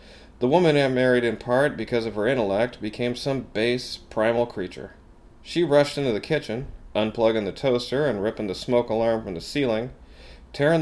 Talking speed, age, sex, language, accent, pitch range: 175 wpm, 40-59, male, English, American, 105-140 Hz